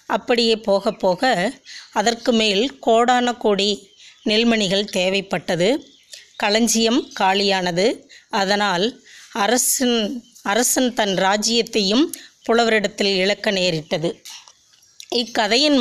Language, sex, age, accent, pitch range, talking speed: Tamil, female, 20-39, native, 200-250 Hz, 70 wpm